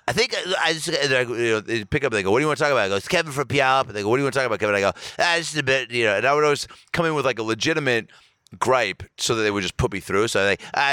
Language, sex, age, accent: English, male, 30-49, American